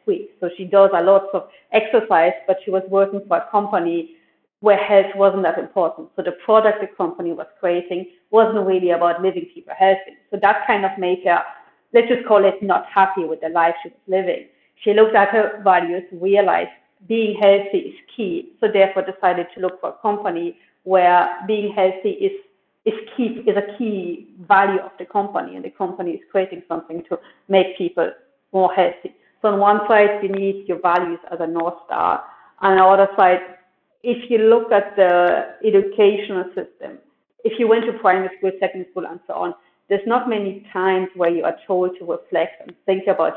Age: 40-59